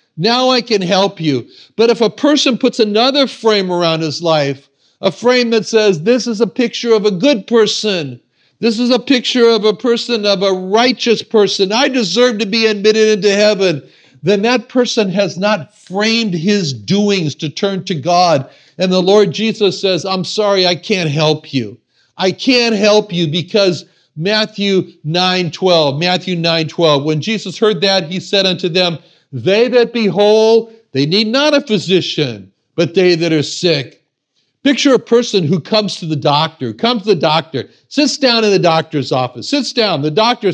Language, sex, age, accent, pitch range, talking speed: English, male, 50-69, American, 160-230 Hz, 180 wpm